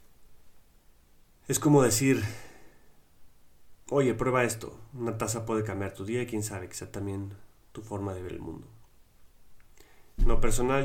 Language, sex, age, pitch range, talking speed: Spanish, male, 30-49, 100-110 Hz, 150 wpm